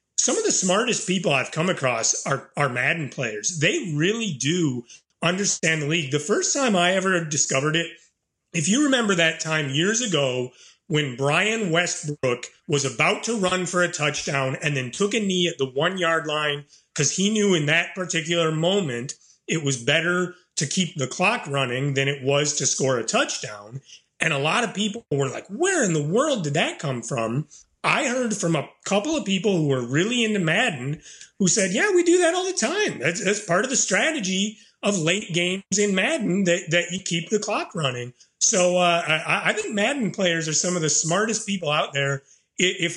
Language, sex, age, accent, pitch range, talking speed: English, male, 30-49, American, 150-195 Hz, 200 wpm